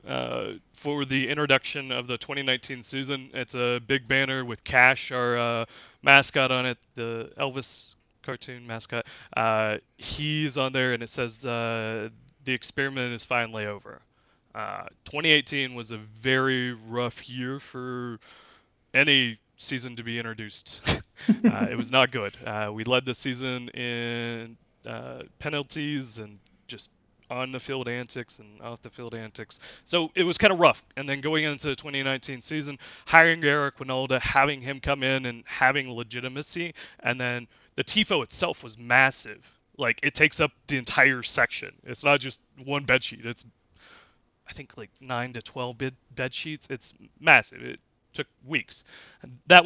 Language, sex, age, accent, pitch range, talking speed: English, male, 20-39, American, 120-140 Hz, 150 wpm